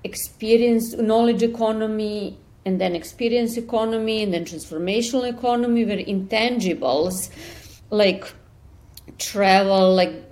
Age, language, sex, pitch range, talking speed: 40-59, English, female, 190-245 Hz, 95 wpm